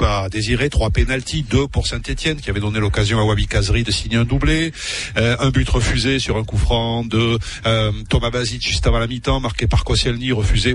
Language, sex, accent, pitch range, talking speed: French, male, French, 105-130 Hz, 210 wpm